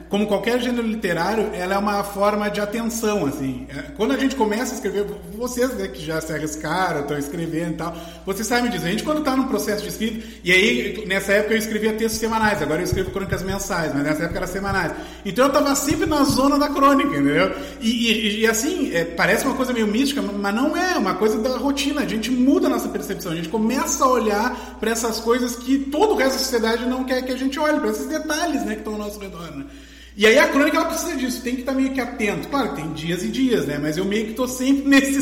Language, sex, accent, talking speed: Portuguese, male, Brazilian, 250 wpm